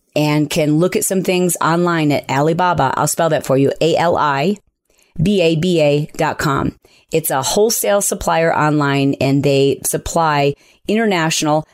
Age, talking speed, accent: 30-49, 125 wpm, American